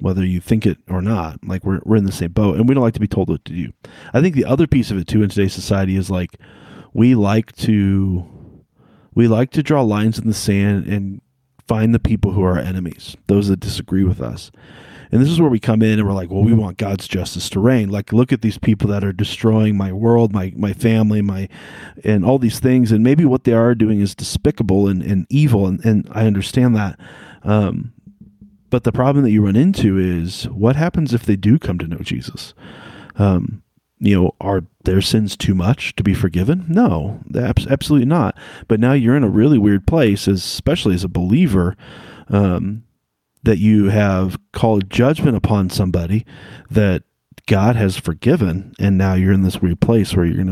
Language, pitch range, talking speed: English, 95-115 Hz, 210 wpm